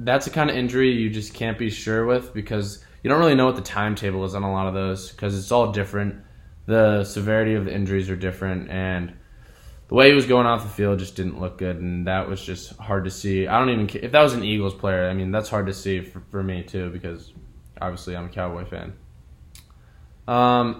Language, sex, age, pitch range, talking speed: English, male, 20-39, 95-115 Hz, 235 wpm